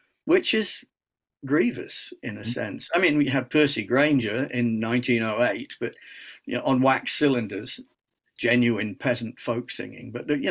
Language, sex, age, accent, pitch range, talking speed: English, male, 50-69, British, 120-140 Hz, 150 wpm